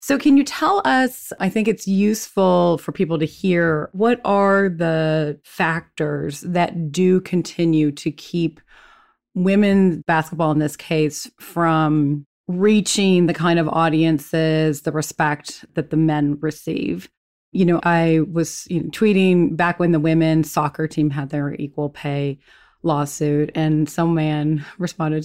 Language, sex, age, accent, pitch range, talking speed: English, female, 30-49, American, 155-190 Hz, 145 wpm